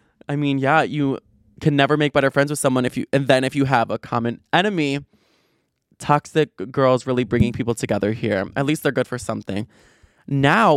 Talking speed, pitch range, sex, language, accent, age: 195 wpm, 125-160 Hz, male, English, American, 20-39